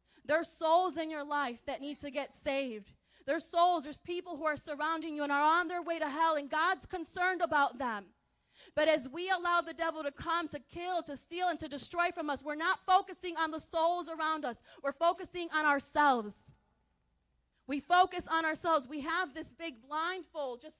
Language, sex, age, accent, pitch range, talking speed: English, female, 30-49, American, 285-335 Hz, 200 wpm